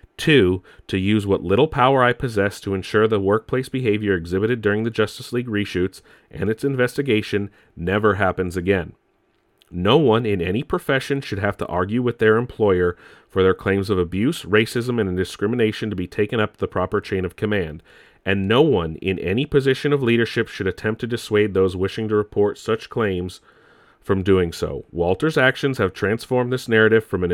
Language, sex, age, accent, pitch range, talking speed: English, male, 30-49, American, 95-130 Hz, 180 wpm